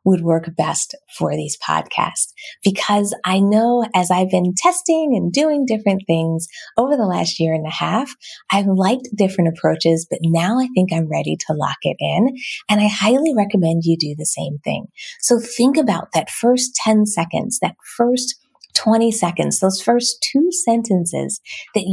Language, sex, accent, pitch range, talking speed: English, female, American, 170-235 Hz, 170 wpm